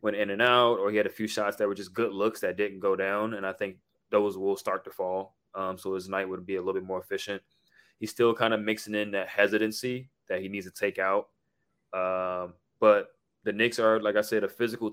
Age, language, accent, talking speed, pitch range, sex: 20-39, English, American, 250 wpm, 95-115 Hz, male